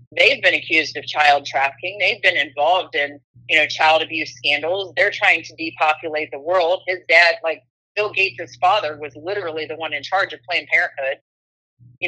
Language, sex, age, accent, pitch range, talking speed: English, female, 30-49, American, 155-215 Hz, 185 wpm